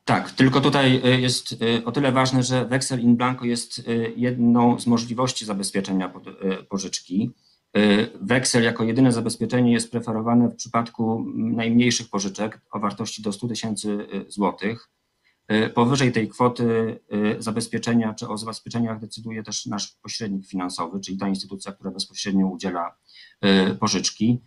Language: Polish